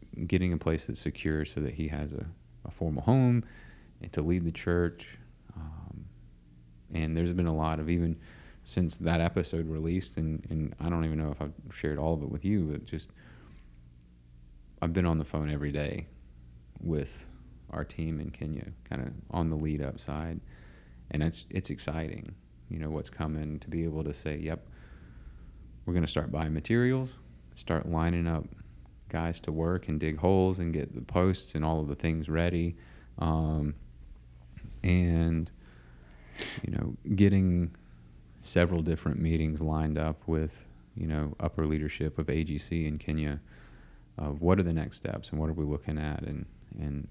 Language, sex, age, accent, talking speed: English, male, 30-49, American, 175 wpm